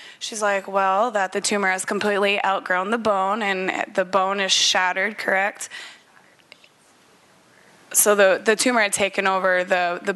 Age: 20-39